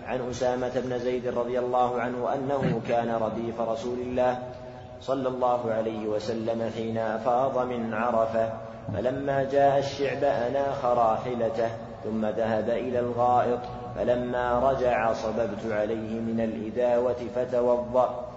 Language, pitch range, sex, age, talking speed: Arabic, 115-125 Hz, male, 30-49, 120 wpm